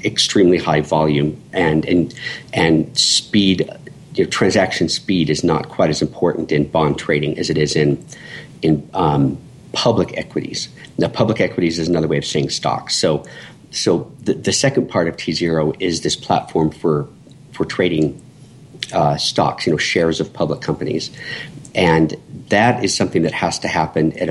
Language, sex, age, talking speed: English, male, 50-69, 160 wpm